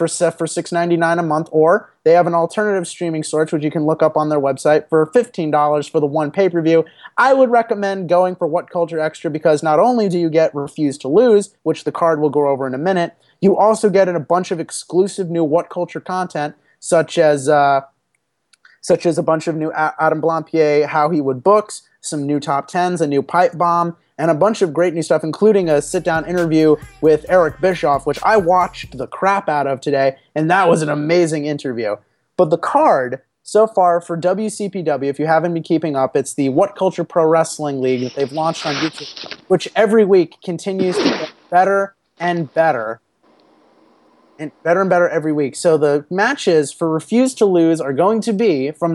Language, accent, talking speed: English, American, 205 wpm